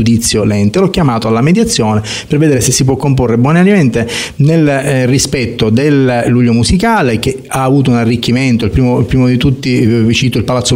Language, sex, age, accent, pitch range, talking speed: Italian, male, 30-49, native, 115-135 Hz, 180 wpm